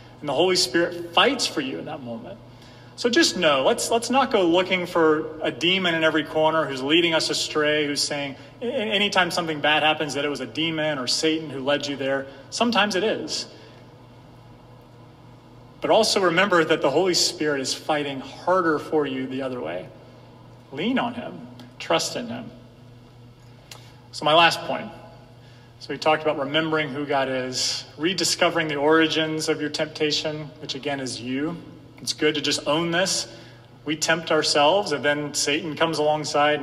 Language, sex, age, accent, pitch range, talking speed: English, male, 30-49, American, 130-155 Hz, 170 wpm